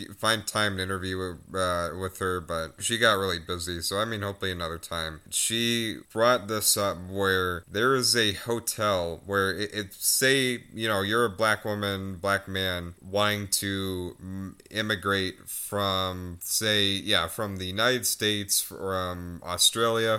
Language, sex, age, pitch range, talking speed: English, male, 30-49, 95-110 Hz, 150 wpm